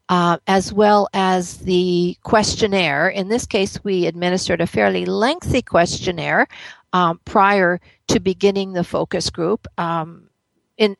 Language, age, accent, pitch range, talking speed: English, 50-69, American, 160-200 Hz, 130 wpm